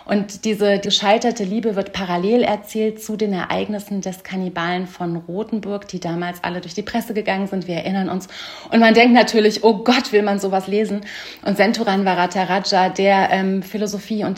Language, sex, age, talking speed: German, female, 30-49, 175 wpm